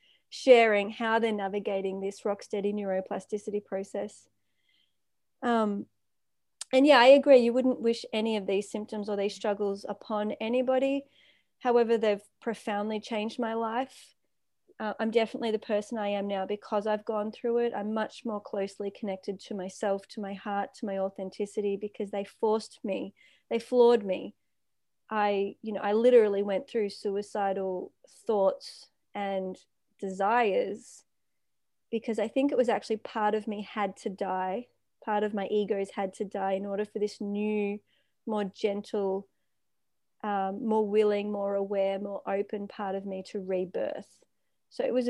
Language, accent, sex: English, Australian, female